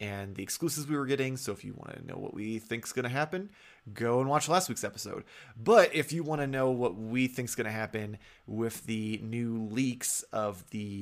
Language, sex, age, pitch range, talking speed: English, male, 20-39, 105-125 Hz, 240 wpm